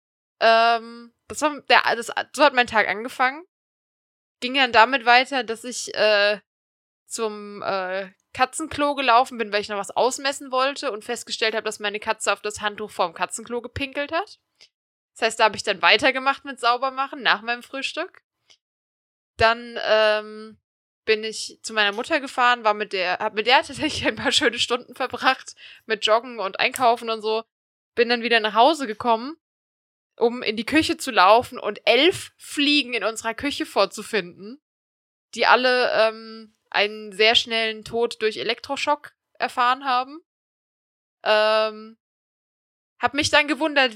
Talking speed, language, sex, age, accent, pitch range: 150 wpm, German, female, 20-39, German, 215-265 Hz